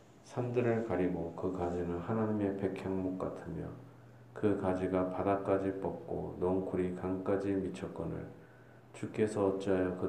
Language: Korean